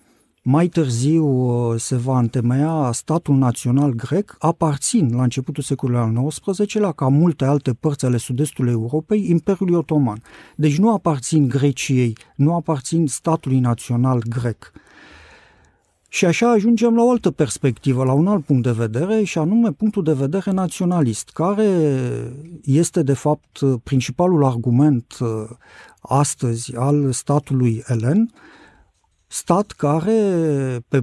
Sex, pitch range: male, 125-175 Hz